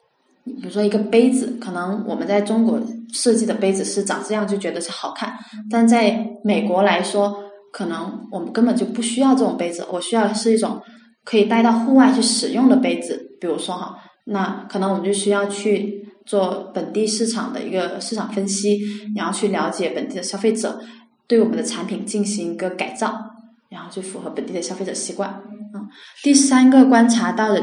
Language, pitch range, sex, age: Chinese, 200-230 Hz, female, 20-39